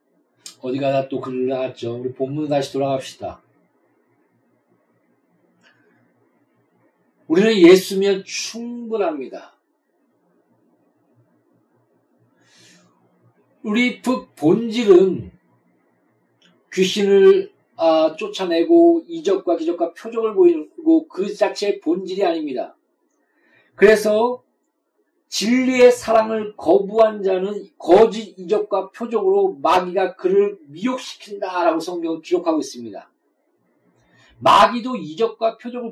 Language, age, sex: Korean, 40-59, male